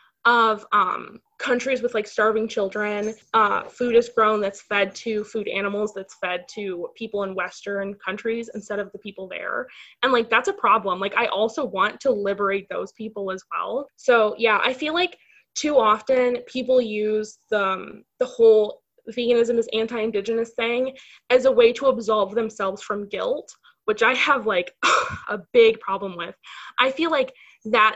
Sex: female